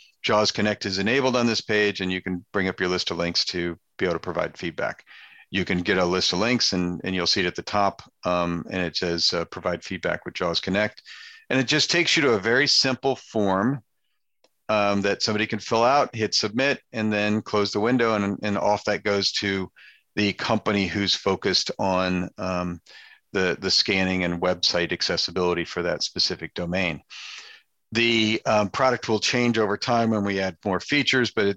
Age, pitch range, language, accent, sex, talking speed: 50-69, 95-115 Hz, English, American, male, 200 wpm